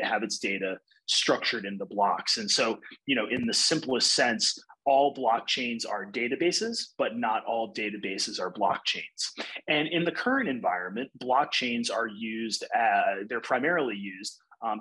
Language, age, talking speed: English, 30-49, 150 wpm